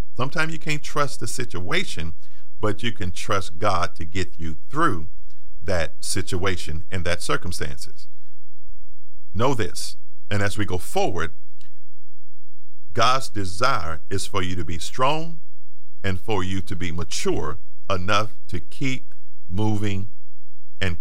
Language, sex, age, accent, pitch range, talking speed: English, male, 50-69, American, 90-120 Hz, 130 wpm